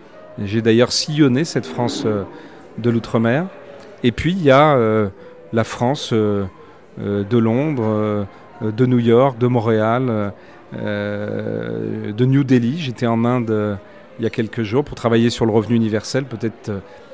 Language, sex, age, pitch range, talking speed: French, male, 40-59, 110-130 Hz, 165 wpm